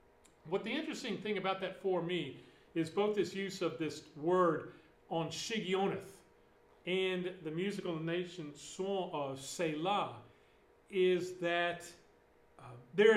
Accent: American